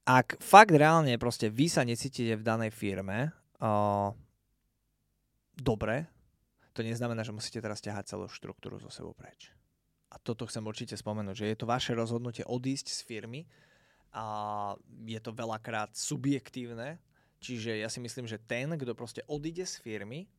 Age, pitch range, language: 20-39, 115-145 Hz, Slovak